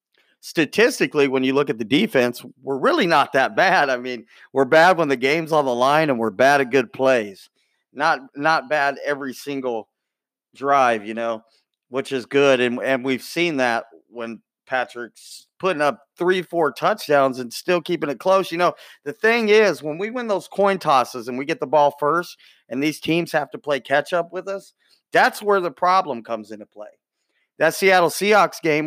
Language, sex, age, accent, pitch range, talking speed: English, male, 40-59, American, 135-175 Hz, 195 wpm